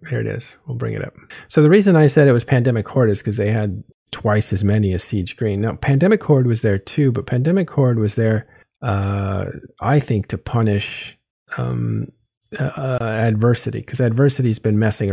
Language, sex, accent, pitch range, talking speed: English, male, American, 100-125 Hz, 195 wpm